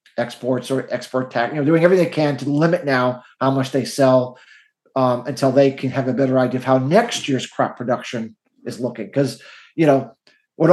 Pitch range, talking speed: 130-150 Hz, 205 wpm